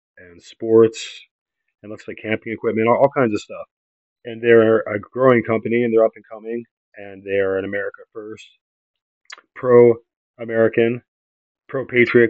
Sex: male